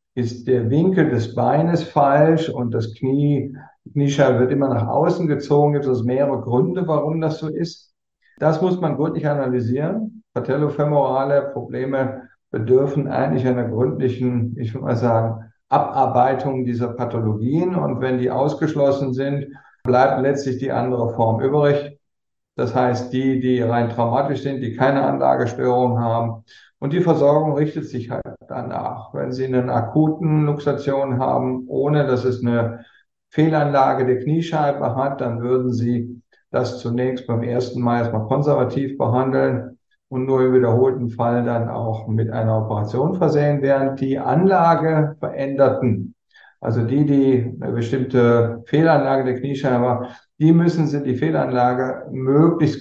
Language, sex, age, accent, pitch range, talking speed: German, male, 50-69, German, 120-145 Hz, 145 wpm